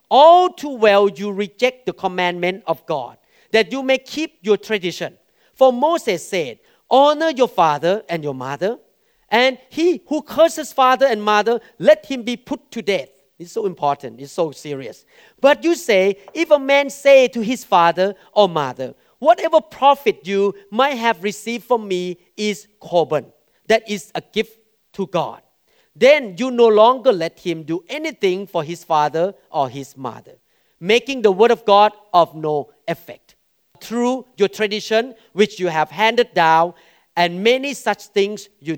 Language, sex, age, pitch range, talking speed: English, male, 40-59, 160-235 Hz, 165 wpm